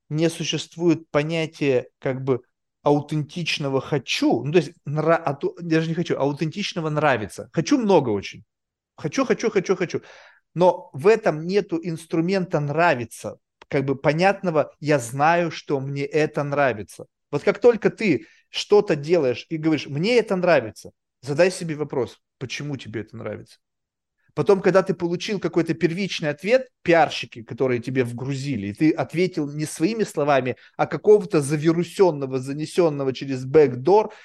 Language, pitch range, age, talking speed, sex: Russian, 140-185 Hz, 30-49, 145 wpm, male